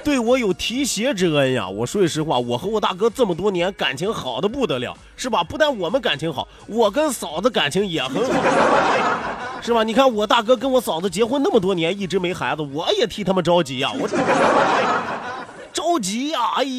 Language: Chinese